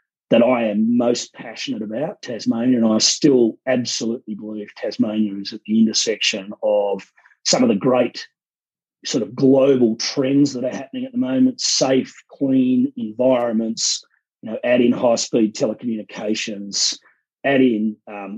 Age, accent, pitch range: 30-49, Australian, 105-130 Hz